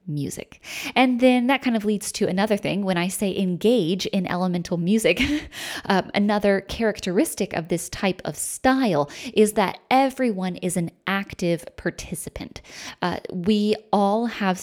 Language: English